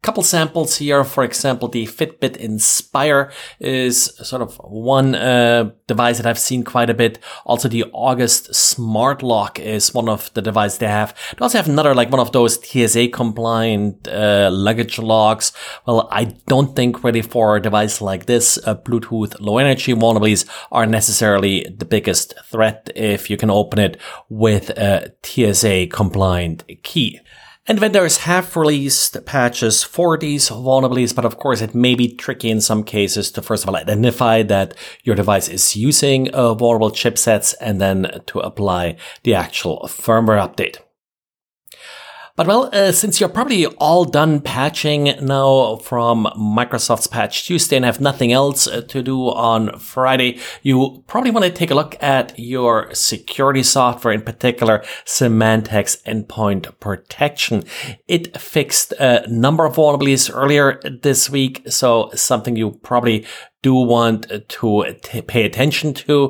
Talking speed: 155 wpm